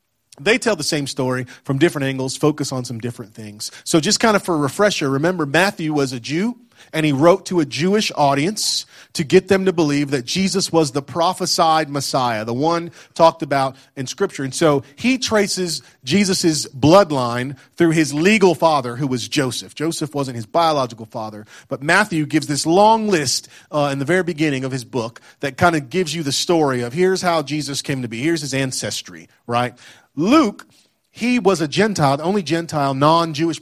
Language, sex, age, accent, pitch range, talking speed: English, male, 40-59, American, 130-175 Hz, 195 wpm